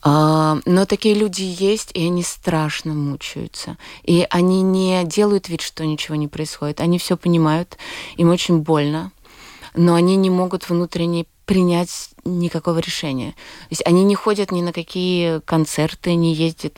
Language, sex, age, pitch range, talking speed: Russian, female, 20-39, 155-175 Hz, 150 wpm